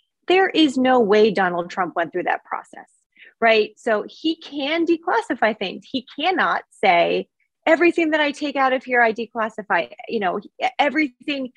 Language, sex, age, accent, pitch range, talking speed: English, female, 30-49, American, 210-270 Hz, 160 wpm